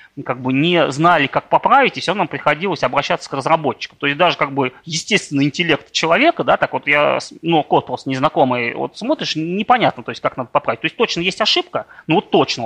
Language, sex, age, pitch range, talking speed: Russian, male, 30-49, 140-200 Hz, 215 wpm